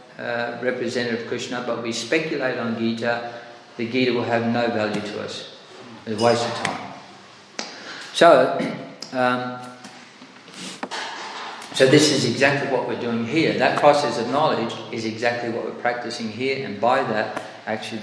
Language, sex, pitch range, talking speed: English, male, 115-150 Hz, 155 wpm